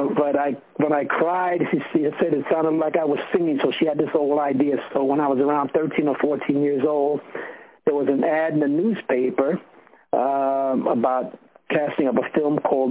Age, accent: 60-79, American